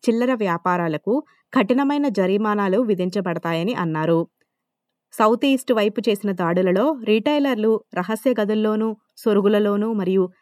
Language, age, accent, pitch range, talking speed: Telugu, 20-39, native, 180-235 Hz, 90 wpm